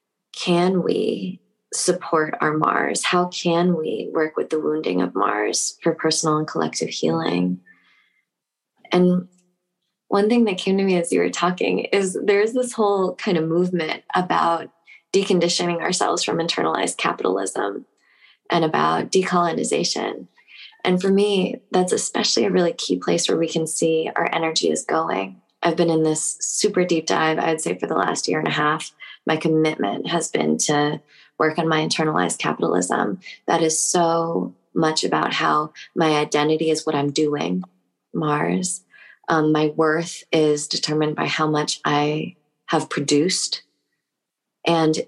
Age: 20-39